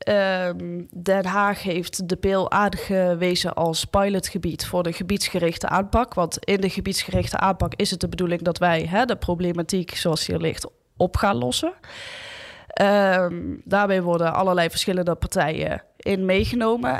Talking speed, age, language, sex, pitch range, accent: 145 wpm, 10-29, Dutch, female, 180-220 Hz, Dutch